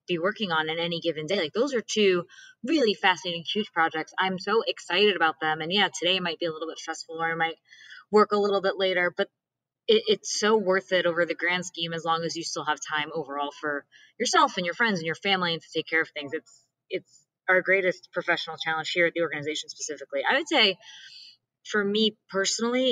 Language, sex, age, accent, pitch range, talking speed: English, female, 20-39, American, 160-195 Hz, 225 wpm